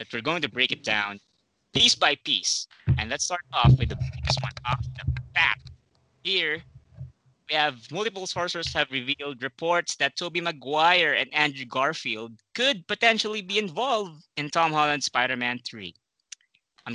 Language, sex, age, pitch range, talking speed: English, male, 20-39, 120-155 Hz, 160 wpm